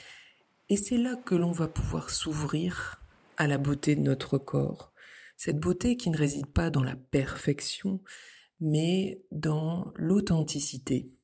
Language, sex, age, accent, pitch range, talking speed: French, female, 50-69, French, 145-200 Hz, 140 wpm